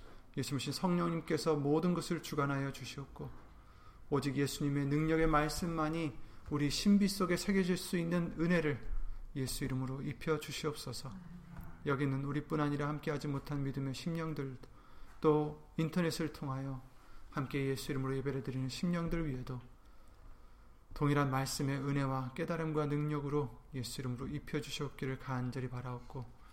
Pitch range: 125-150 Hz